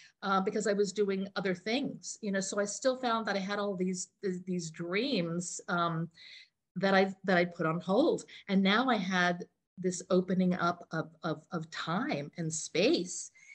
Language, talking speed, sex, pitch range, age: English, 180 wpm, female, 185-240 Hz, 50-69